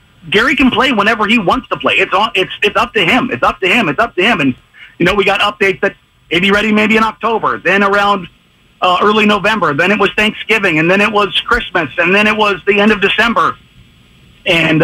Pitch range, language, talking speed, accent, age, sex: 185-235 Hz, English, 235 wpm, American, 40-59, male